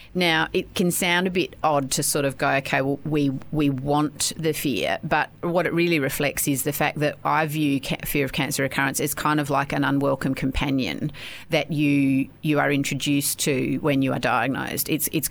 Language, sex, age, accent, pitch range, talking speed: English, female, 30-49, Australian, 135-155 Hz, 205 wpm